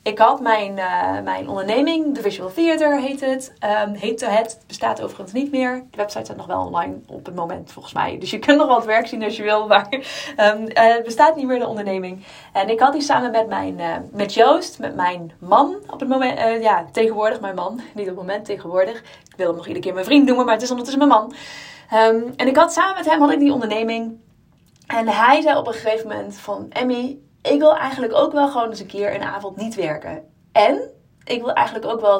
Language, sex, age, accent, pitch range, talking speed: Dutch, female, 20-39, Dutch, 205-280 Hz, 240 wpm